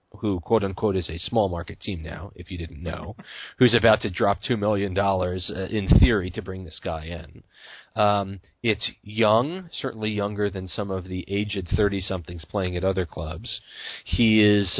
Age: 40-59